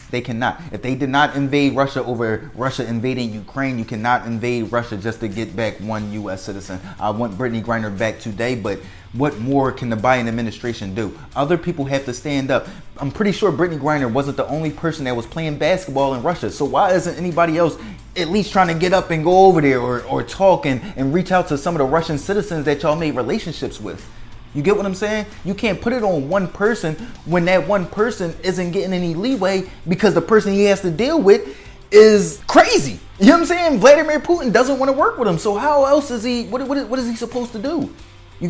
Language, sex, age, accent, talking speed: English, male, 20-39, American, 230 wpm